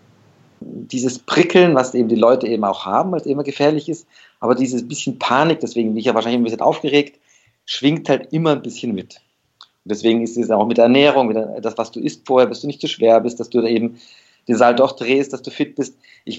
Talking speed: 230 wpm